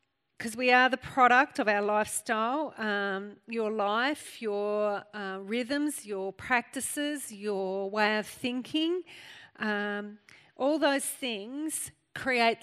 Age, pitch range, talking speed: 40-59, 215-260 Hz, 120 wpm